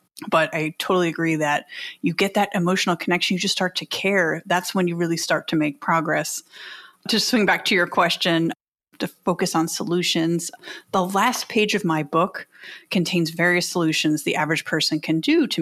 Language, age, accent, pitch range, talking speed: English, 30-49, American, 165-205 Hz, 185 wpm